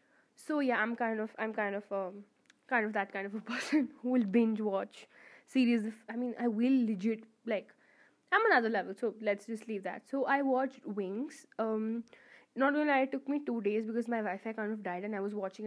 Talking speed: 230 wpm